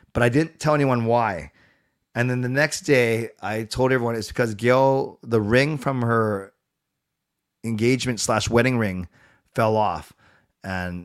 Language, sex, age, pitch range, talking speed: English, male, 30-49, 115-145 Hz, 150 wpm